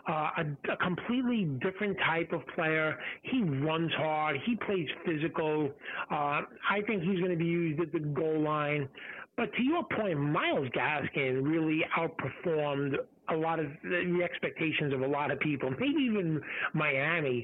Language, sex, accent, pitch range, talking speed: English, male, American, 155-200 Hz, 170 wpm